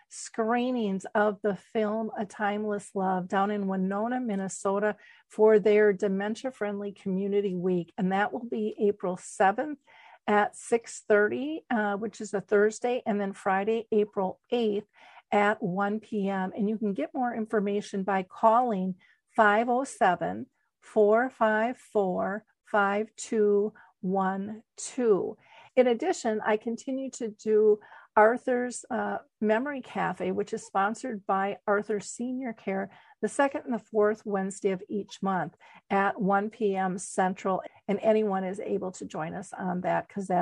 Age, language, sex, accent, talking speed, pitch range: 50-69, English, female, American, 130 wpm, 195-225 Hz